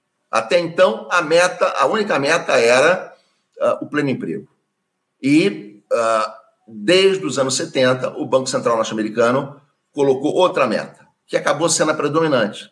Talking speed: 125 wpm